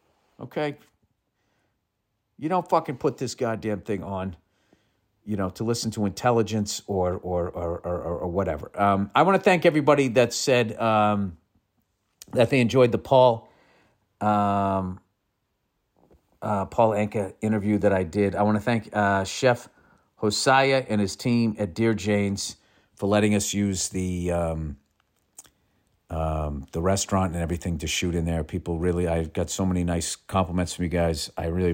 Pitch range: 85-105 Hz